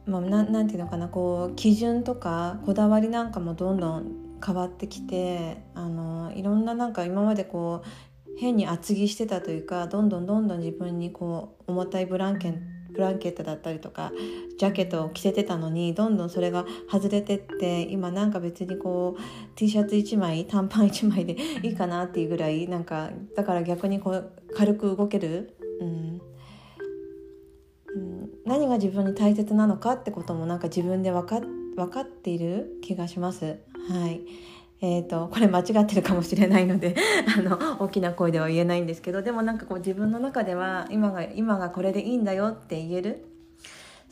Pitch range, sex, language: 170-205 Hz, female, Japanese